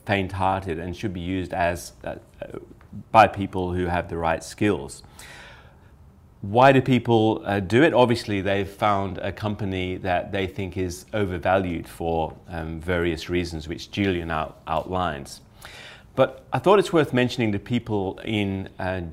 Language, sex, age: English, male, 30-49